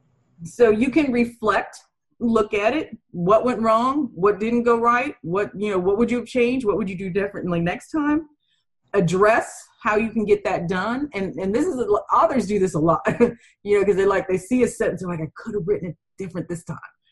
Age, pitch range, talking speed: 30-49, 170-225 Hz, 230 wpm